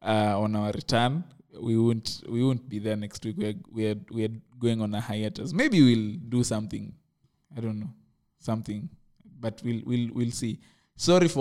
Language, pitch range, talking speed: English, 110-125 Hz, 205 wpm